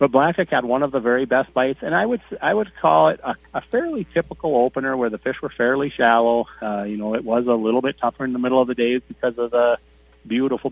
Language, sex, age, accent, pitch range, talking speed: English, male, 40-59, American, 115-140 Hz, 260 wpm